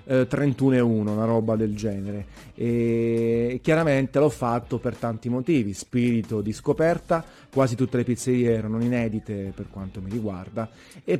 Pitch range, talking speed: 110-135 Hz, 150 wpm